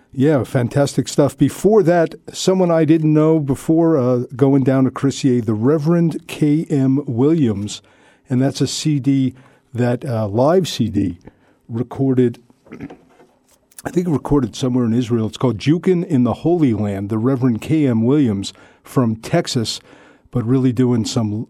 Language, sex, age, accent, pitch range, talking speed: English, male, 50-69, American, 115-145 Hz, 145 wpm